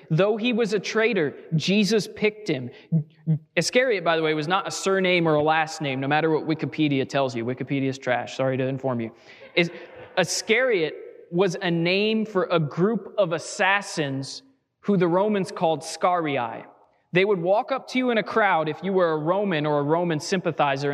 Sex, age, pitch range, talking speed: male, 20-39, 145-195 Hz, 185 wpm